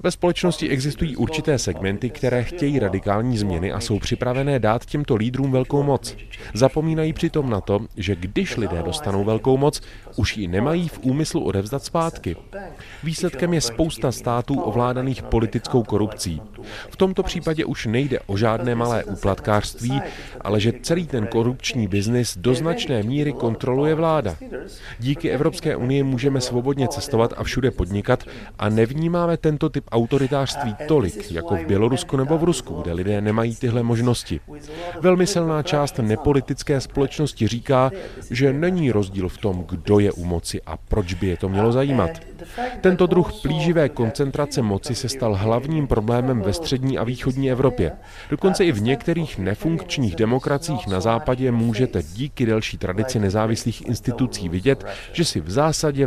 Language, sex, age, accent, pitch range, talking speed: Czech, male, 30-49, native, 105-145 Hz, 150 wpm